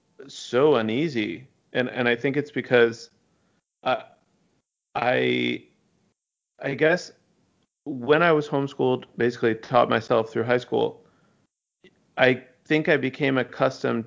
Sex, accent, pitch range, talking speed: male, American, 115-130 Hz, 115 wpm